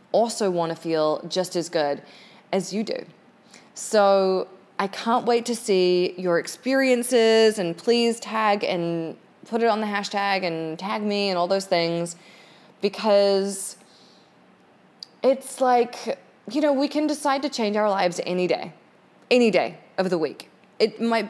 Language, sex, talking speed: English, female, 155 wpm